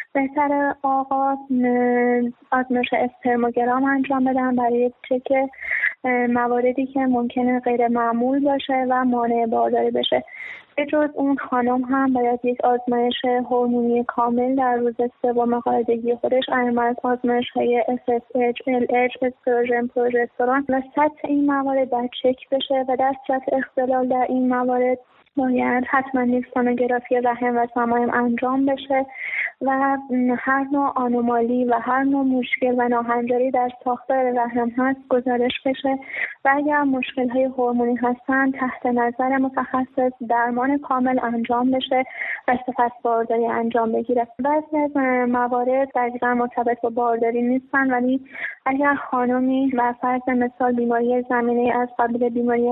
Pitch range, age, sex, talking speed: 245-265 Hz, 20-39, female, 125 wpm